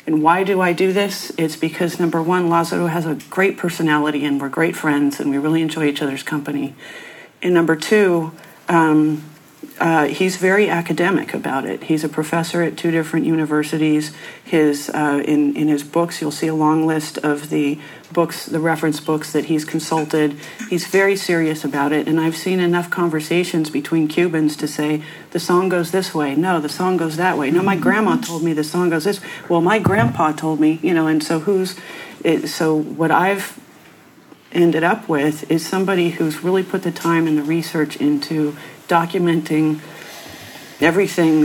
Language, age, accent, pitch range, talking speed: English, 40-59, American, 155-175 Hz, 195 wpm